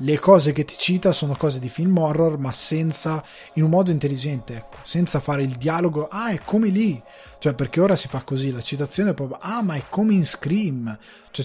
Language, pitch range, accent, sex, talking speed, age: Italian, 130-165 Hz, native, male, 215 wpm, 20-39